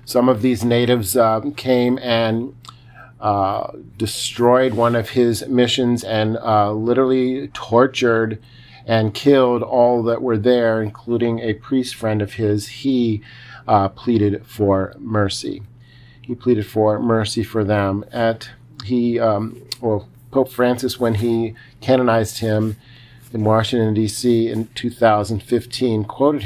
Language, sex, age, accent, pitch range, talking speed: English, male, 40-59, American, 110-125 Hz, 125 wpm